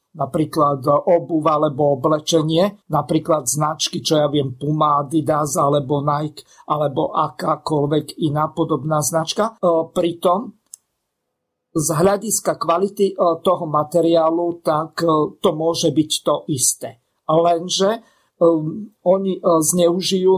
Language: Slovak